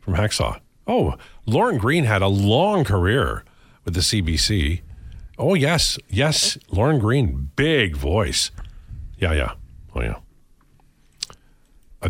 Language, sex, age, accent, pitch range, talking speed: English, male, 50-69, American, 90-120 Hz, 120 wpm